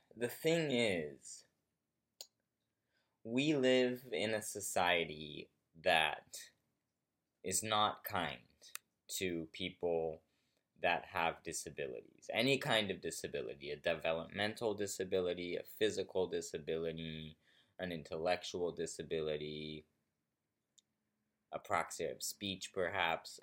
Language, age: English, 20-39